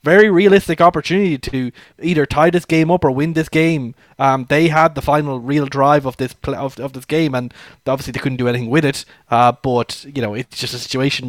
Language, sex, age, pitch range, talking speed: English, male, 20-39, 135-160 Hz, 225 wpm